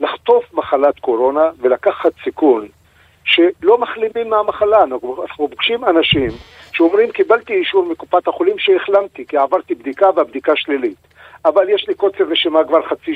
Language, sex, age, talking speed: Hebrew, male, 50-69, 130 wpm